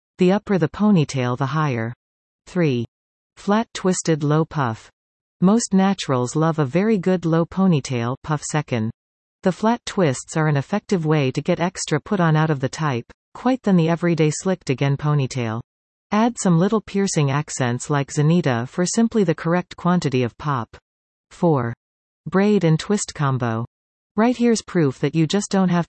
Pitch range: 140-185 Hz